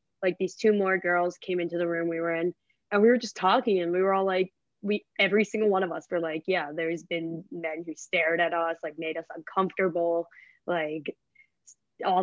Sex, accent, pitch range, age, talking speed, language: female, American, 165-210 Hz, 20-39, 215 wpm, English